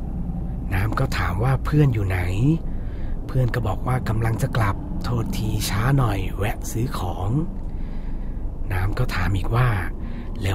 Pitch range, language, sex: 95-120 Hz, Thai, male